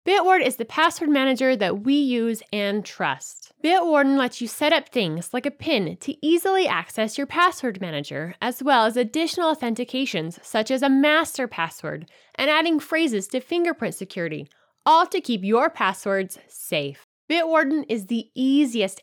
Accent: American